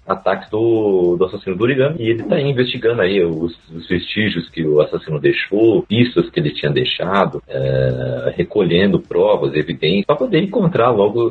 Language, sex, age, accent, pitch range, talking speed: Portuguese, male, 40-59, Brazilian, 90-145 Hz, 160 wpm